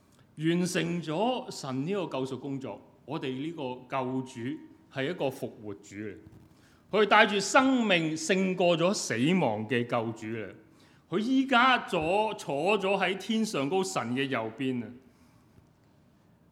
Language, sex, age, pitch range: Chinese, male, 30-49, 140-225 Hz